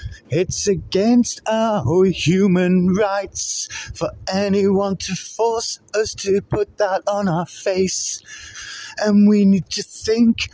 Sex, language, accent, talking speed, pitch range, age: male, English, British, 120 wpm, 180-210 Hz, 30-49